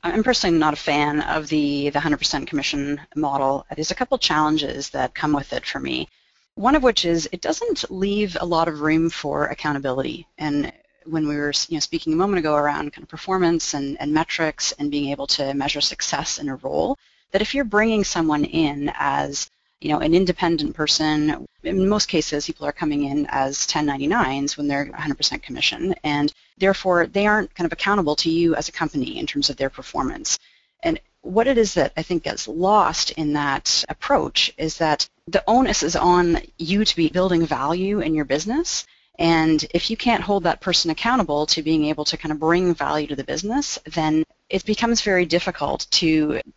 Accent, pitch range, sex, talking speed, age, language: American, 150-190 Hz, female, 195 wpm, 30-49, English